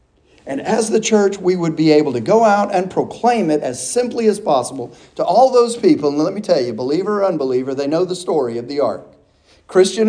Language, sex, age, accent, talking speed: English, male, 50-69, American, 225 wpm